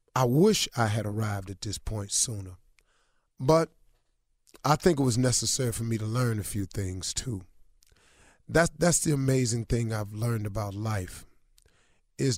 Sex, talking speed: male, 160 wpm